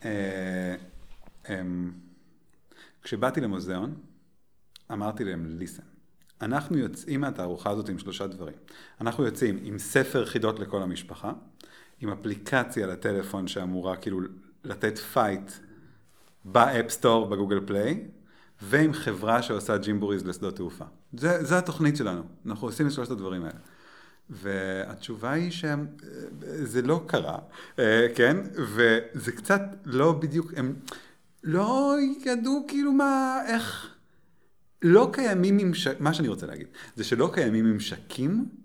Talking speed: 115 wpm